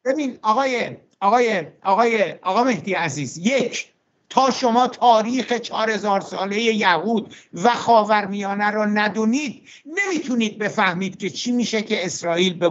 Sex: male